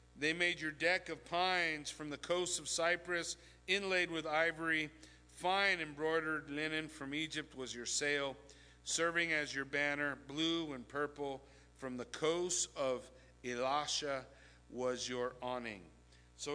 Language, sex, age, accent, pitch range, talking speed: English, male, 50-69, American, 135-180 Hz, 140 wpm